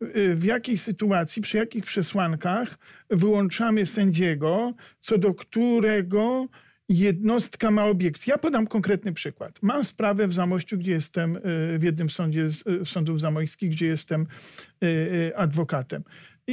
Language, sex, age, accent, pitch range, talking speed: Polish, male, 50-69, native, 180-215 Hz, 120 wpm